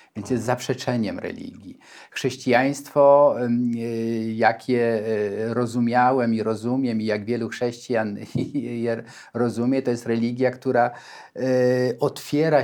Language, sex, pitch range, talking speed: Polish, male, 115-140 Hz, 95 wpm